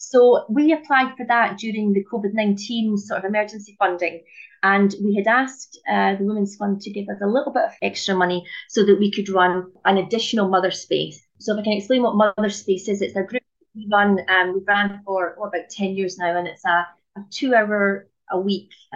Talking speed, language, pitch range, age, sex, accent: 205 wpm, English, 185-220 Hz, 30-49, female, British